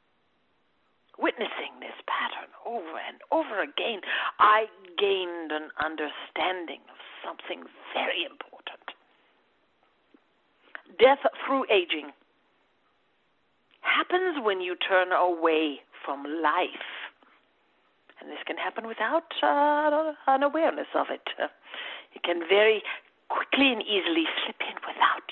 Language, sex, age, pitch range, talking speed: English, female, 50-69, 175-295 Hz, 105 wpm